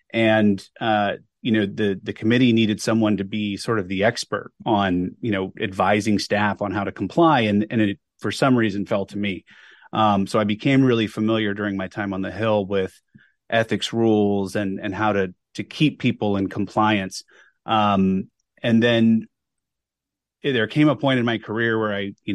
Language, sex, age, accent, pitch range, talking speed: English, male, 30-49, American, 100-115 Hz, 190 wpm